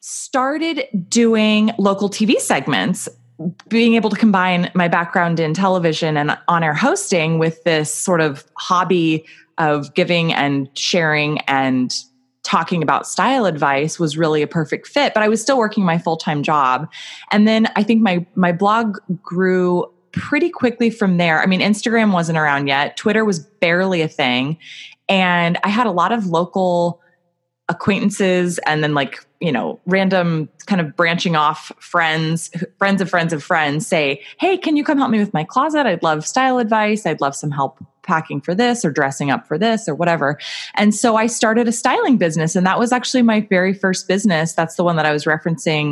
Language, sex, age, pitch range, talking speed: English, female, 20-39, 155-215 Hz, 185 wpm